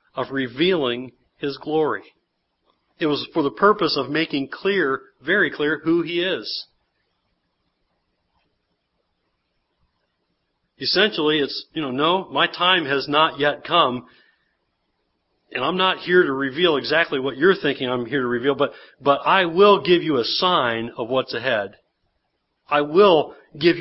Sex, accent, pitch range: male, American, 125-175 Hz